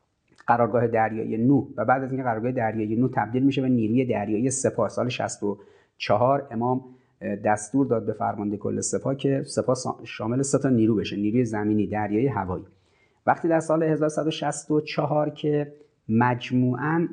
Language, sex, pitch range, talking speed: Persian, male, 115-150 Hz, 145 wpm